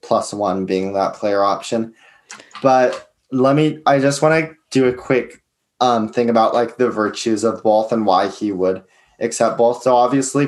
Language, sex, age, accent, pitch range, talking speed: English, male, 20-39, American, 105-120 Hz, 185 wpm